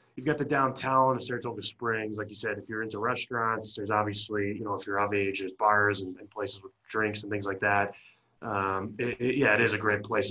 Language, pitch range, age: English, 105-135 Hz, 20-39